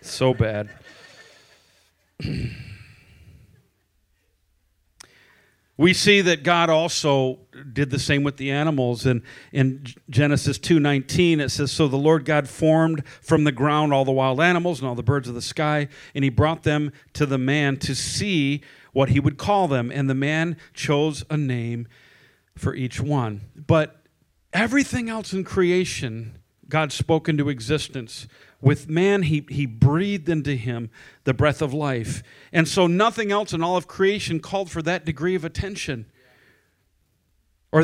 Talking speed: 155 wpm